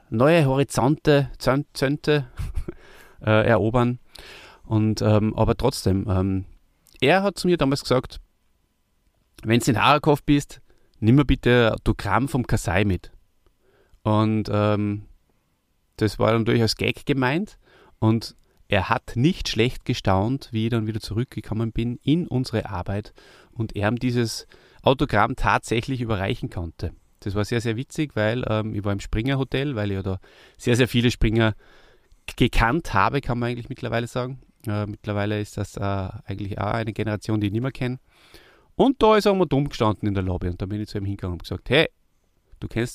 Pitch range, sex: 105-130 Hz, male